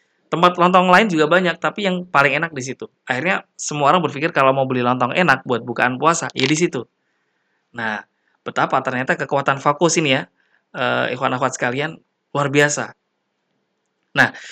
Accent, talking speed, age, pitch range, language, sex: native, 165 wpm, 20-39, 130-165 Hz, Indonesian, male